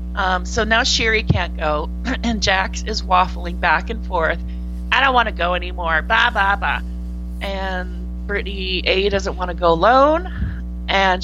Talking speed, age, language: 160 wpm, 30-49, English